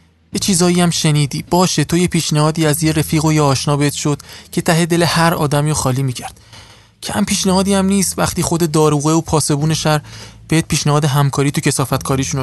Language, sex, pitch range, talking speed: Persian, male, 130-160 Hz, 190 wpm